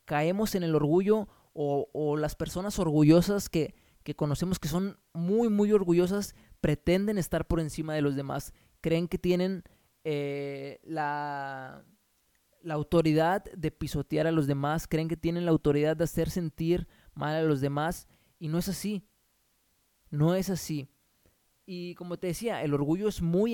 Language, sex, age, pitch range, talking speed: Spanish, male, 20-39, 150-175 Hz, 160 wpm